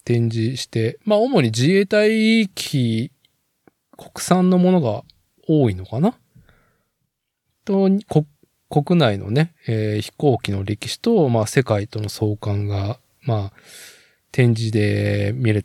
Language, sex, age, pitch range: Japanese, male, 20-39, 110-155 Hz